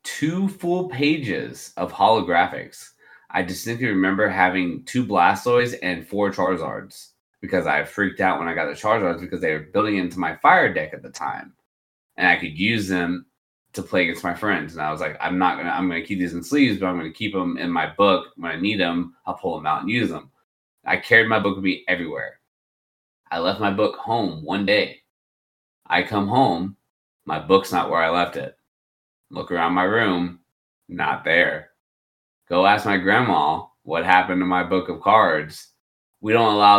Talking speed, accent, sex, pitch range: 200 wpm, American, male, 85-110 Hz